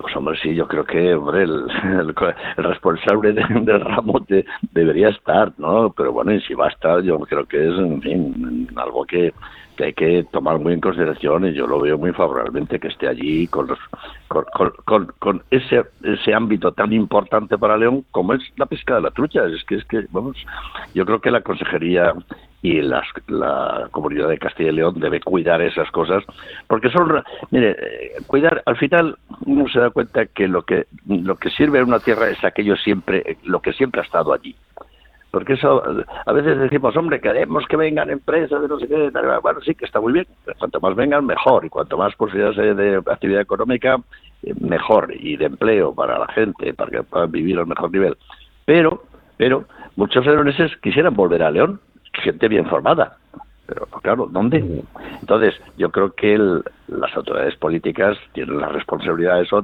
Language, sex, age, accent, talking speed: Spanish, male, 60-79, Spanish, 190 wpm